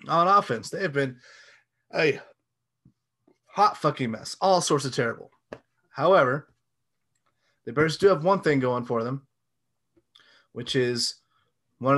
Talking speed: 130 wpm